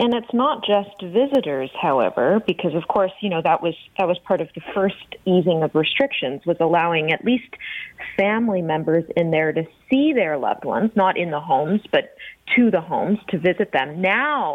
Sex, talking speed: female, 195 wpm